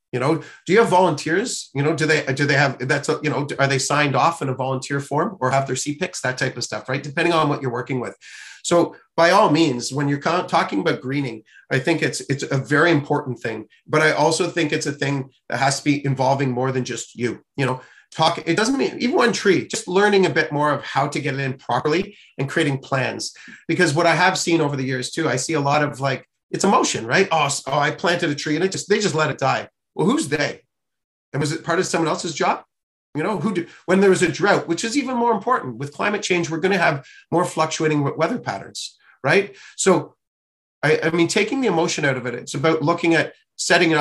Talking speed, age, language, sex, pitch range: 245 wpm, 40-59, English, male, 135-165 Hz